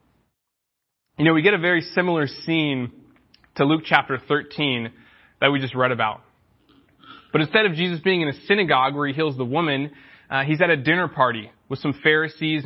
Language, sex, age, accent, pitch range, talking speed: English, male, 20-39, American, 135-180 Hz, 185 wpm